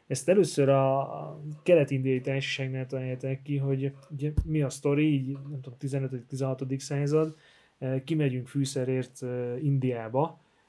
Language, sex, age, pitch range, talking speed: Hungarian, male, 20-39, 130-155 Hz, 105 wpm